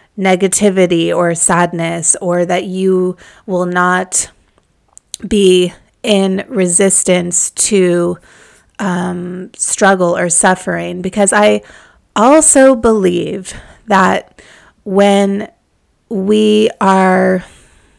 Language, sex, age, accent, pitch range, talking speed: English, female, 30-49, American, 180-205 Hz, 80 wpm